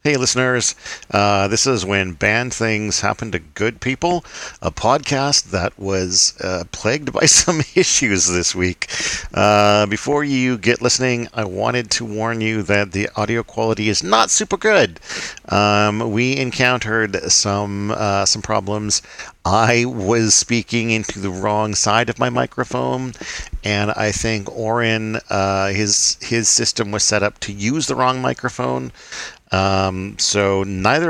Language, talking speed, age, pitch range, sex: English, 145 wpm, 50-69, 100-115 Hz, male